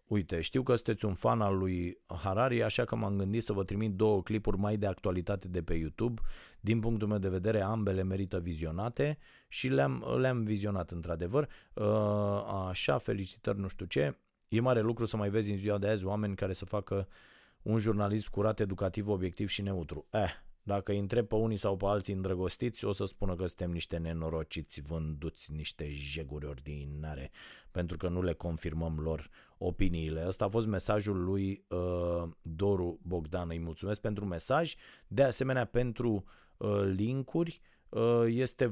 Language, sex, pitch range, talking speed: Romanian, male, 90-110 Hz, 165 wpm